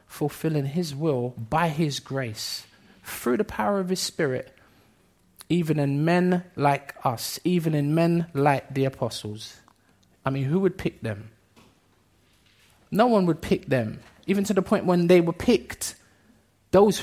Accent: British